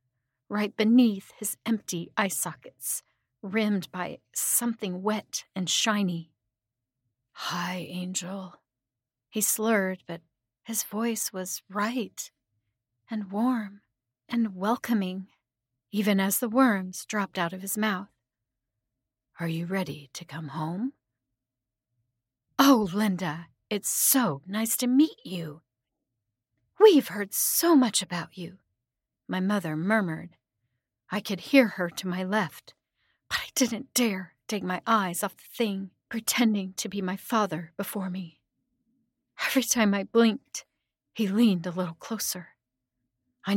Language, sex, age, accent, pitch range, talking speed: English, female, 40-59, American, 130-215 Hz, 125 wpm